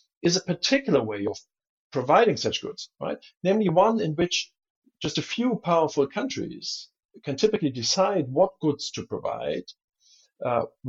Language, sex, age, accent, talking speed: English, male, 60-79, German, 145 wpm